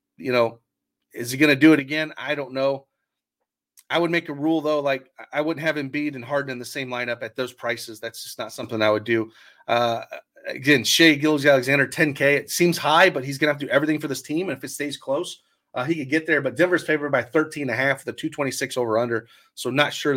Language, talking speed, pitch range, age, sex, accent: English, 240 wpm, 130-165 Hz, 30-49, male, American